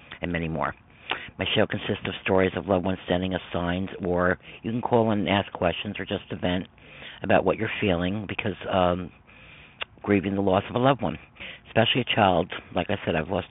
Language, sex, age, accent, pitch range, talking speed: English, male, 50-69, American, 90-110 Hz, 200 wpm